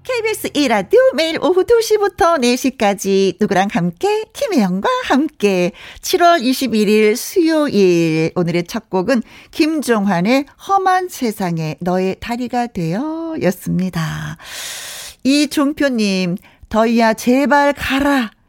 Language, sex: Korean, female